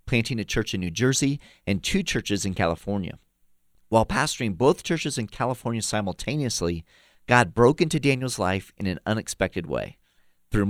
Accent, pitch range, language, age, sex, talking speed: American, 95-130 Hz, English, 40-59, male, 155 wpm